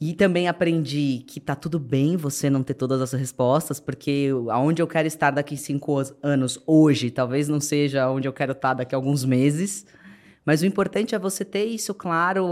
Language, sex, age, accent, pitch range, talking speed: Portuguese, female, 20-39, Brazilian, 135-175 Hz, 190 wpm